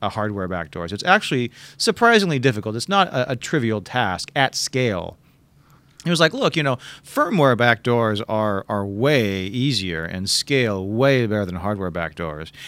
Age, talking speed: 40-59, 160 wpm